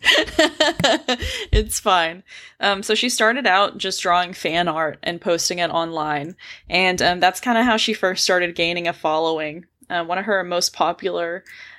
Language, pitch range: English, 175-215 Hz